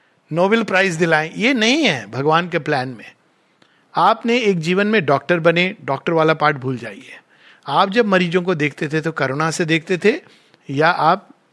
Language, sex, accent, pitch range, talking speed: Hindi, male, native, 155-200 Hz, 175 wpm